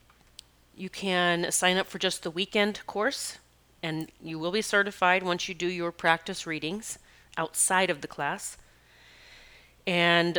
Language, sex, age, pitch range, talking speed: English, female, 30-49, 160-195 Hz, 145 wpm